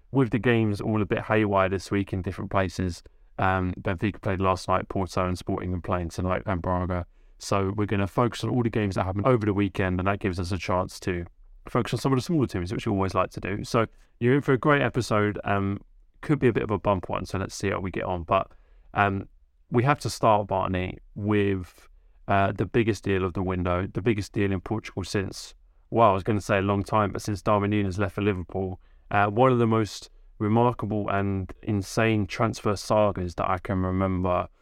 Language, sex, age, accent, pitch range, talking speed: English, male, 20-39, British, 95-110 Hz, 230 wpm